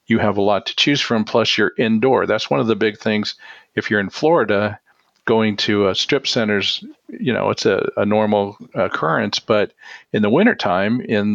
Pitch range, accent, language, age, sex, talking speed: 100-110 Hz, American, English, 50-69, male, 195 wpm